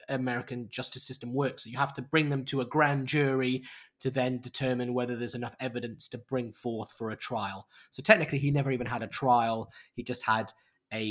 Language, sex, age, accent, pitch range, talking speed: English, male, 20-39, British, 120-145 Hz, 210 wpm